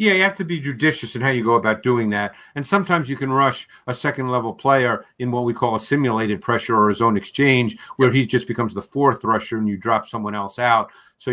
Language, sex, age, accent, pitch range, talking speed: English, male, 50-69, American, 110-130 Hz, 245 wpm